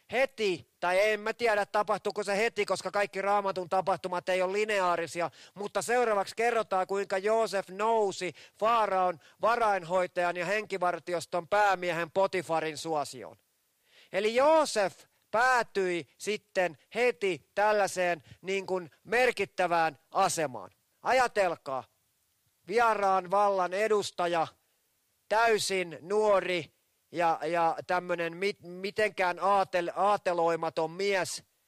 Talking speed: 95 wpm